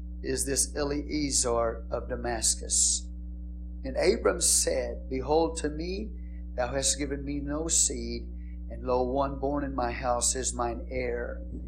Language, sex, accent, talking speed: English, male, American, 140 wpm